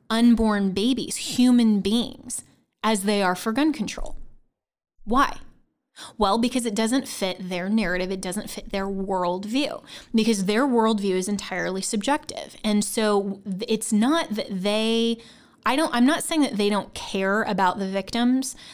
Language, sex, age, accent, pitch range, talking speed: English, female, 20-39, American, 195-230 Hz, 150 wpm